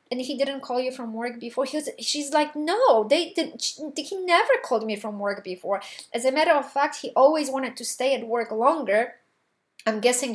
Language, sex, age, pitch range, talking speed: English, female, 30-49, 220-290 Hz, 220 wpm